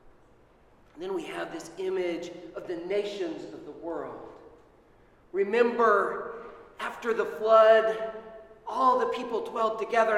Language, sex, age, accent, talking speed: English, male, 40-59, American, 120 wpm